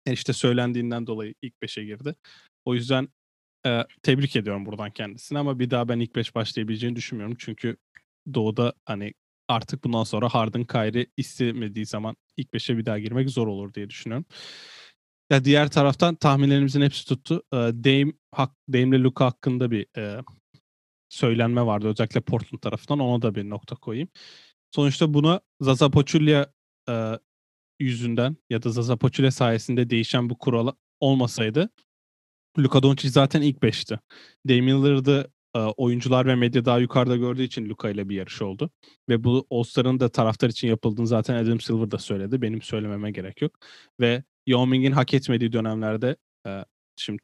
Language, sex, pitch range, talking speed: Turkish, male, 110-135 Hz, 155 wpm